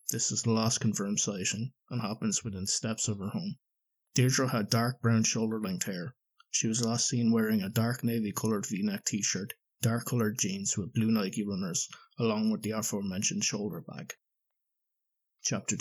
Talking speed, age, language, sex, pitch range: 160 wpm, 30-49, English, male, 110-160 Hz